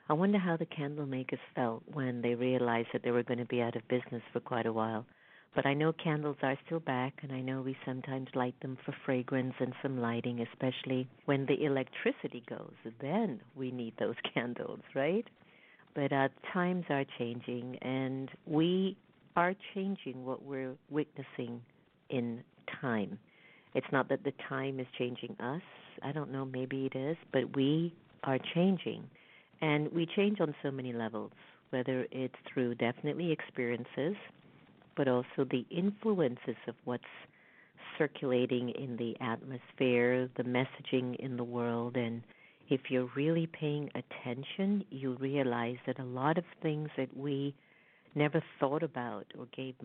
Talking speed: 160 wpm